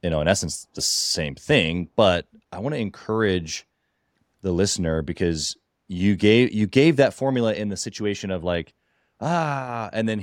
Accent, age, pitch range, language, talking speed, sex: American, 20-39, 95-130 Hz, English, 170 wpm, male